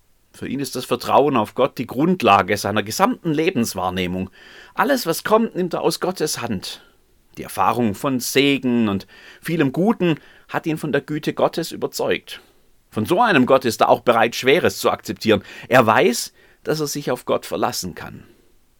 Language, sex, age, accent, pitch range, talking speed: German, male, 30-49, German, 95-130 Hz, 170 wpm